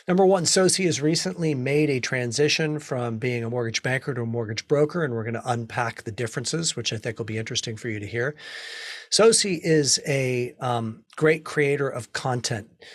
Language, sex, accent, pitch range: English, male, American, 120-155 Hz